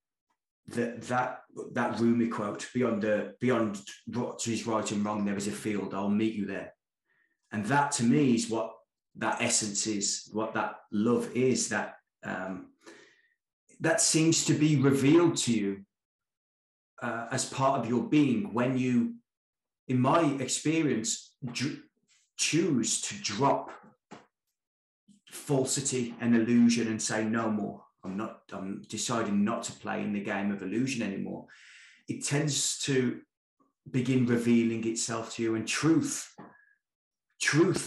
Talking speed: 140 wpm